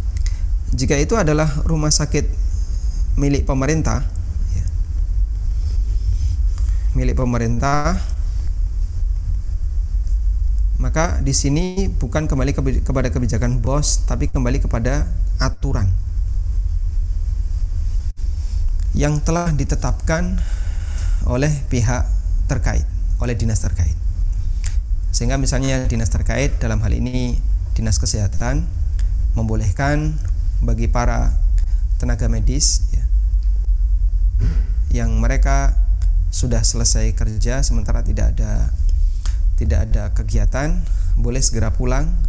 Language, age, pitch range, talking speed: Indonesian, 30-49, 75-100 Hz, 85 wpm